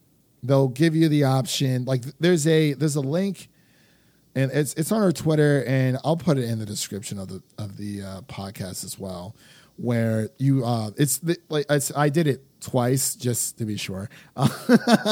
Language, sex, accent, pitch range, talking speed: English, male, American, 130-160 Hz, 180 wpm